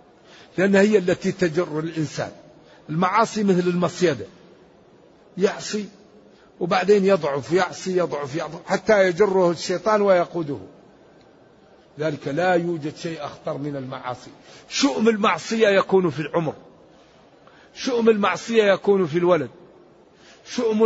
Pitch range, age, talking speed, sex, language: 170-205 Hz, 50-69, 105 wpm, male, Arabic